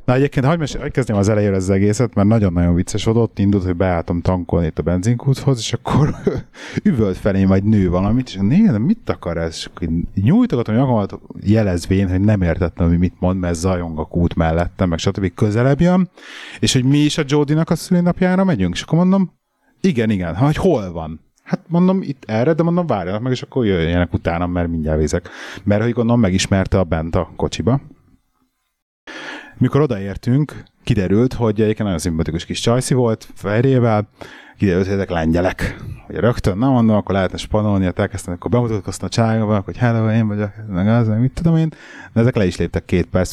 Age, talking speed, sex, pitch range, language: 30-49, 185 wpm, male, 90-125 Hz, Hungarian